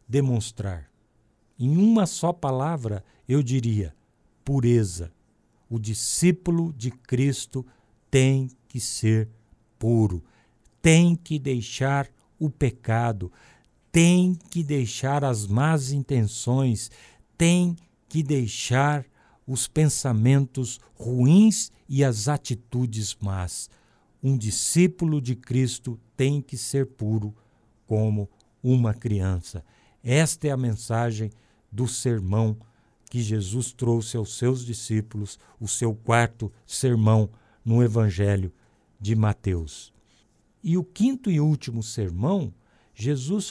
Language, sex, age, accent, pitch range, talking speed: Portuguese, male, 60-79, Brazilian, 110-145 Hz, 105 wpm